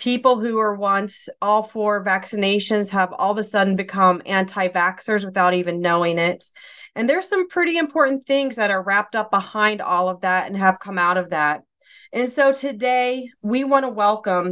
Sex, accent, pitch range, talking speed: female, American, 195-245 Hz, 185 wpm